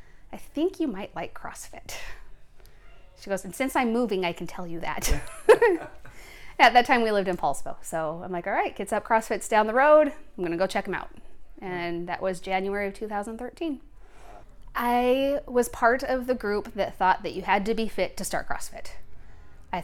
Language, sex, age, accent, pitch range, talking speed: English, female, 30-49, American, 180-230 Hz, 195 wpm